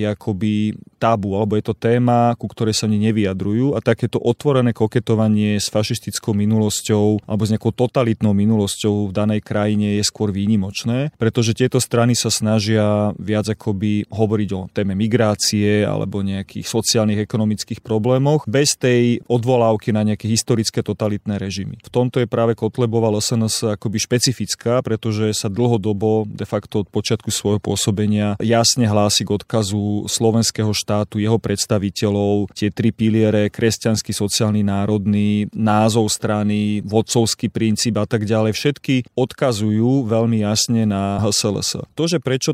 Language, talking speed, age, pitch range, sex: Slovak, 140 wpm, 30-49, 105-120 Hz, male